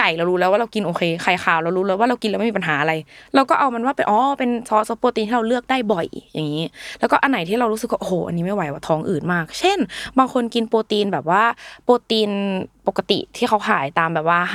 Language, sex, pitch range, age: Thai, female, 175-240 Hz, 20-39